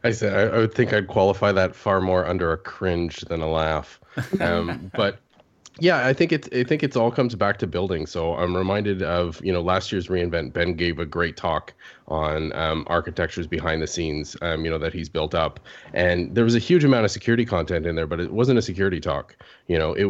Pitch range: 85-115 Hz